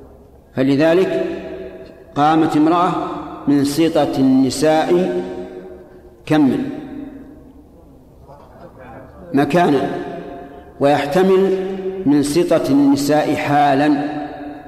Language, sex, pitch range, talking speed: Arabic, male, 135-165 Hz, 55 wpm